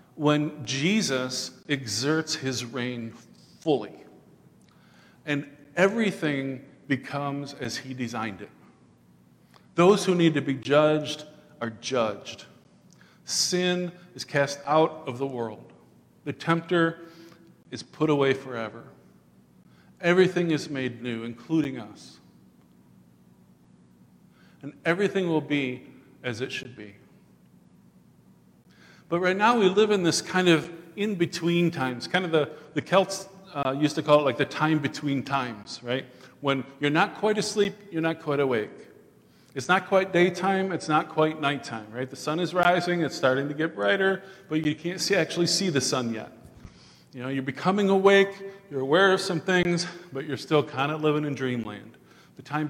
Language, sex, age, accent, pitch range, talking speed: English, male, 50-69, American, 130-175 Hz, 150 wpm